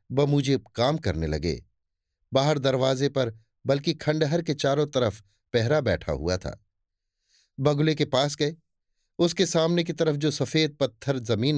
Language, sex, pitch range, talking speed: Hindi, male, 105-150 Hz, 150 wpm